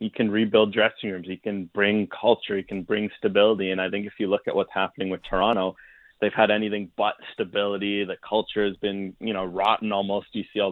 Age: 20-39